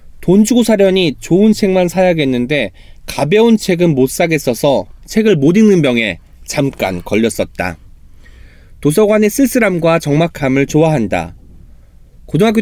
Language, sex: Korean, male